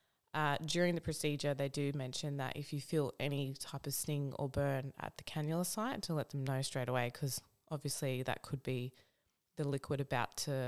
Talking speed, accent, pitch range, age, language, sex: 200 wpm, Australian, 130-160 Hz, 20-39, English, female